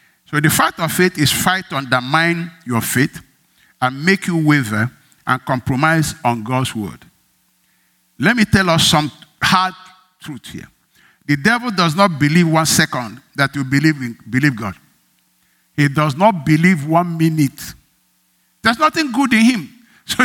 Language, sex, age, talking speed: English, male, 50-69, 155 wpm